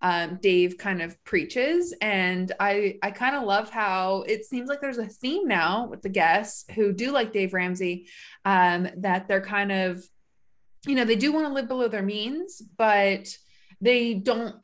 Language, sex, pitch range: English, female, 180-215 Hz